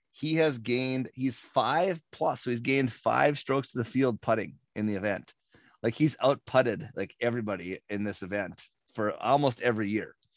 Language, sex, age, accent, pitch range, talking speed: English, male, 30-49, American, 100-130 Hz, 180 wpm